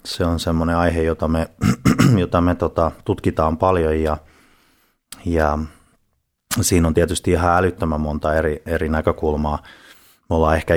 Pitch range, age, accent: 75-85 Hz, 30-49, native